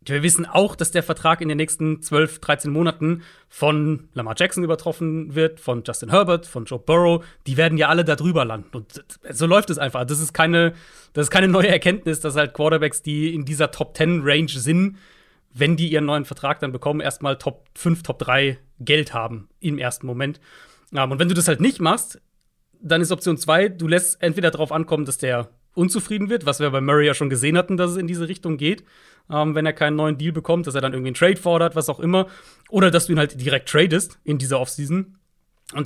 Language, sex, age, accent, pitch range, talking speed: German, male, 40-59, German, 140-170 Hz, 220 wpm